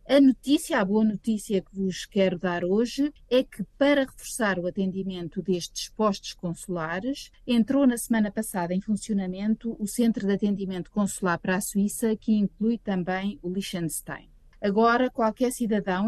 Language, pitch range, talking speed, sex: Portuguese, 185-225 Hz, 155 wpm, female